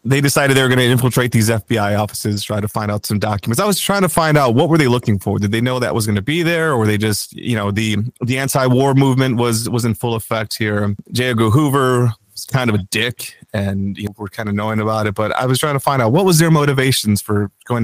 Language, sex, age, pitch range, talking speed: English, male, 30-49, 105-130 Hz, 275 wpm